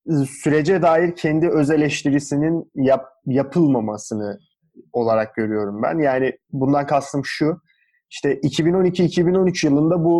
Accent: native